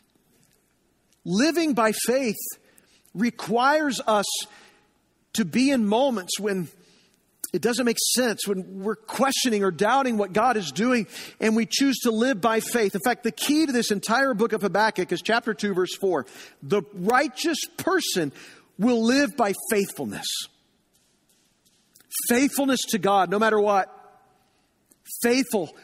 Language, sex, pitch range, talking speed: English, male, 175-230 Hz, 135 wpm